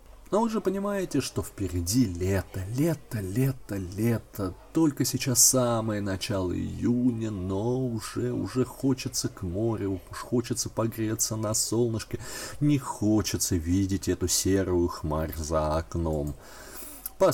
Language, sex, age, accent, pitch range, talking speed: Russian, male, 30-49, native, 90-125 Hz, 120 wpm